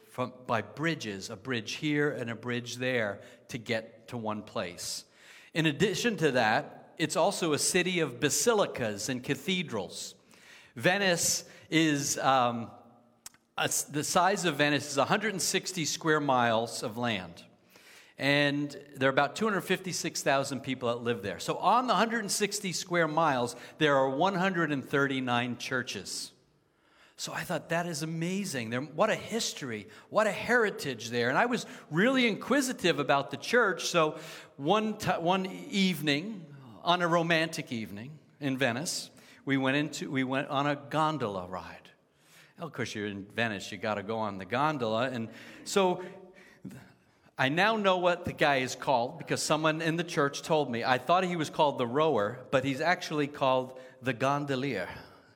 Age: 50-69